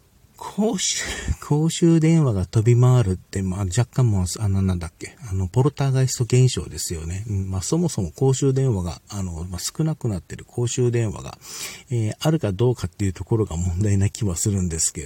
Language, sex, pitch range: Japanese, male, 95-125 Hz